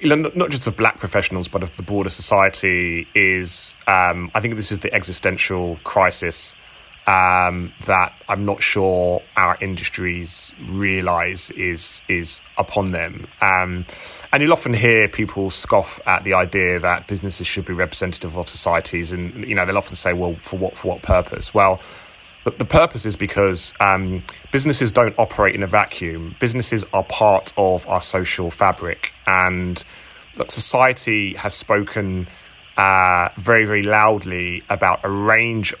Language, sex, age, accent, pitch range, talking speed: English, male, 20-39, British, 90-105 Hz, 160 wpm